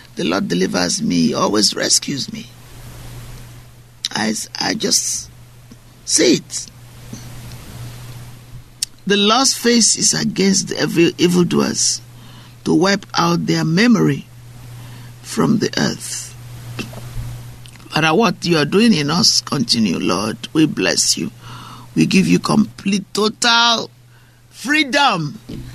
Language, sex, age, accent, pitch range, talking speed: English, male, 50-69, Nigerian, 120-165 Hz, 105 wpm